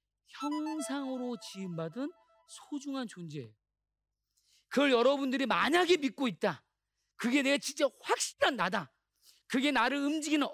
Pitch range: 190-280 Hz